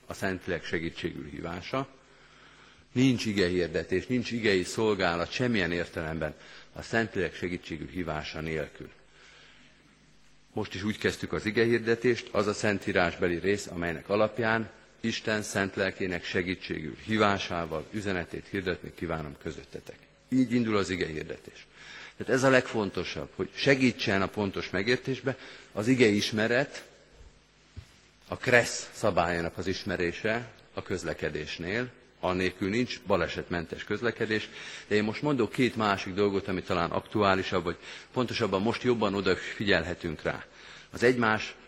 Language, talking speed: Hungarian, 125 wpm